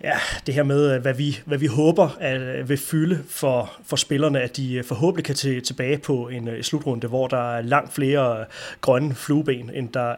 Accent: native